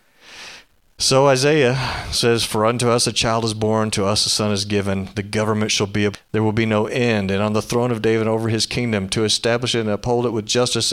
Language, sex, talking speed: English, male, 235 wpm